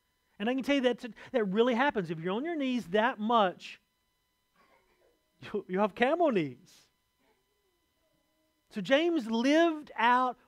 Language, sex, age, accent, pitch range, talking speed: English, male, 40-59, American, 195-260 Hz, 135 wpm